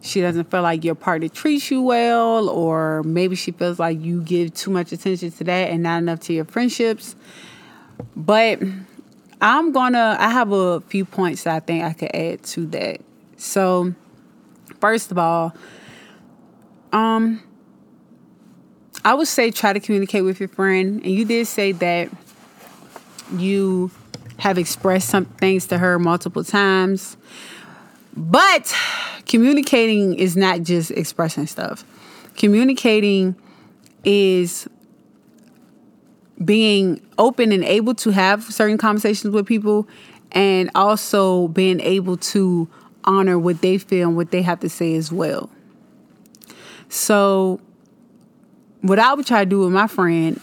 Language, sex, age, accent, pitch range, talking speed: English, female, 20-39, American, 175-225 Hz, 140 wpm